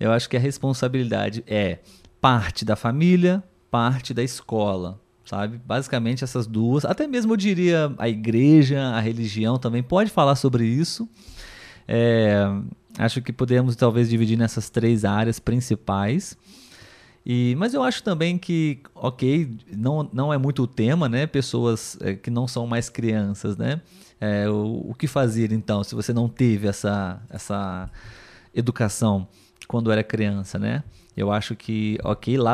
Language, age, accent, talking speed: Portuguese, 20-39, Brazilian, 145 wpm